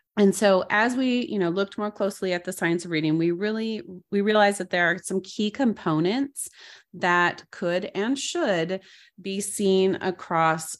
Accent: American